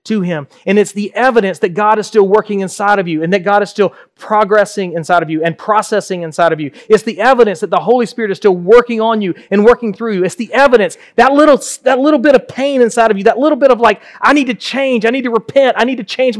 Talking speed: 270 wpm